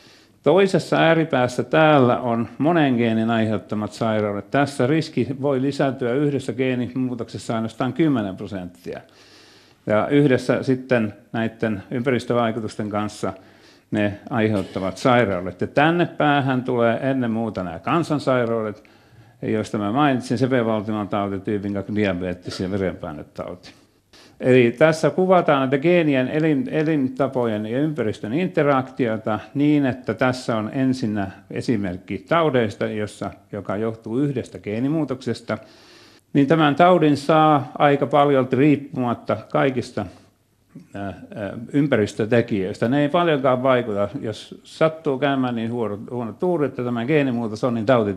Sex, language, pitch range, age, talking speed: male, Finnish, 105-140 Hz, 50-69, 110 wpm